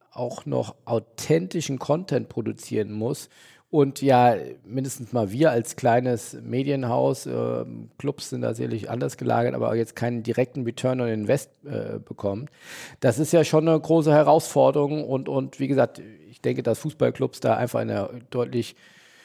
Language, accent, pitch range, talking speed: German, German, 120-145 Hz, 160 wpm